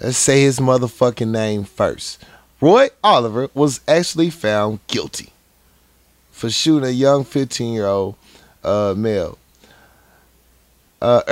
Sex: male